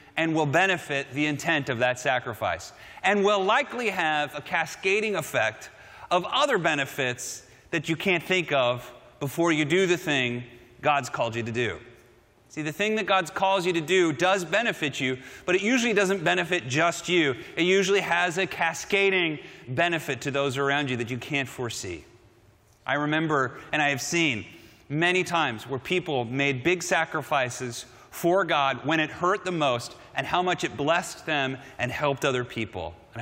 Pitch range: 130-170 Hz